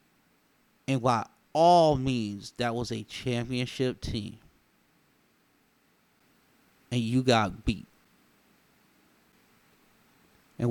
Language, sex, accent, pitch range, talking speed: English, male, American, 110-135 Hz, 80 wpm